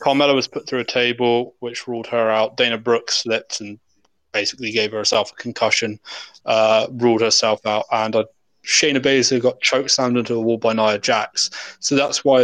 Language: English